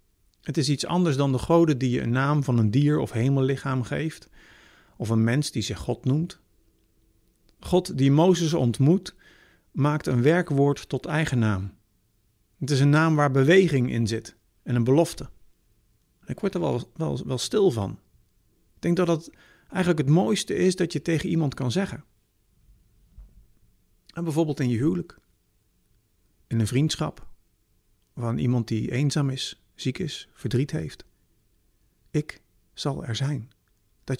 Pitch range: 110-165 Hz